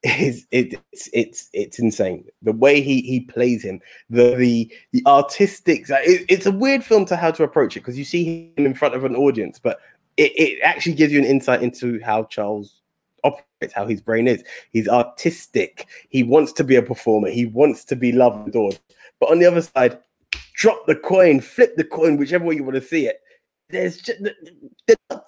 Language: English